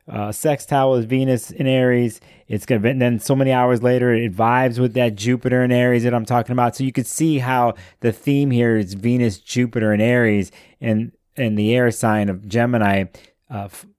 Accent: American